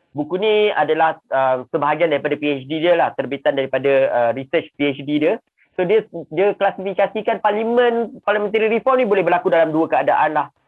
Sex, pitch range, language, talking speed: male, 155-195 Hz, Malay, 165 wpm